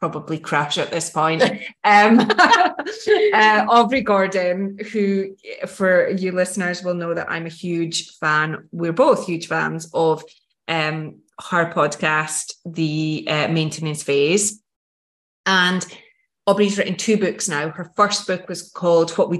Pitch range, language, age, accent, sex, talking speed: 165-205 Hz, English, 20-39, British, female, 140 wpm